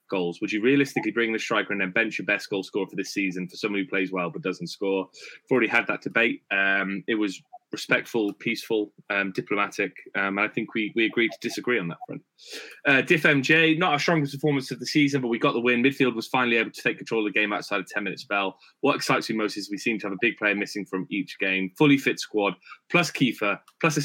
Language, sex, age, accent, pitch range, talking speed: English, male, 20-39, British, 100-135 Hz, 255 wpm